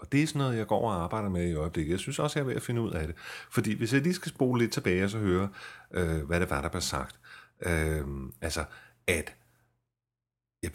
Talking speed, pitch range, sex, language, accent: 245 wpm, 85-115 Hz, male, Danish, native